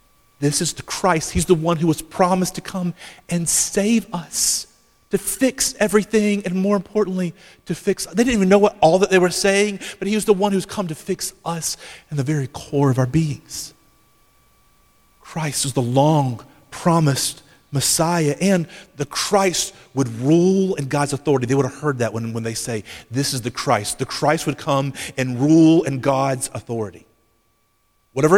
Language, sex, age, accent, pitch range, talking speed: English, male, 40-59, American, 125-175 Hz, 180 wpm